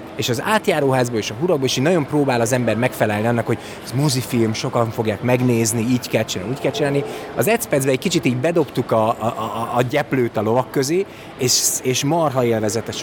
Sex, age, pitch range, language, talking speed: male, 30-49, 115-155 Hz, Hungarian, 200 wpm